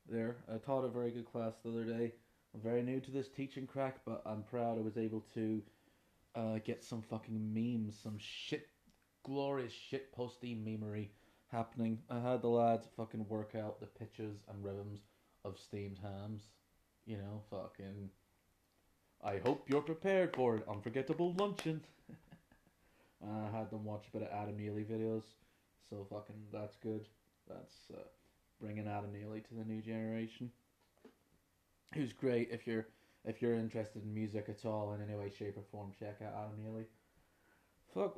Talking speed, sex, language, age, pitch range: 165 wpm, male, English, 20-39, 105-120 Hz